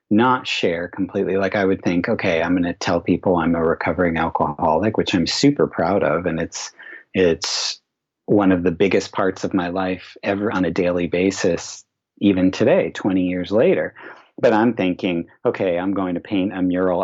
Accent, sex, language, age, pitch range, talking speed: American, male, English, 40-59, 85-100 Hz, 185 wpm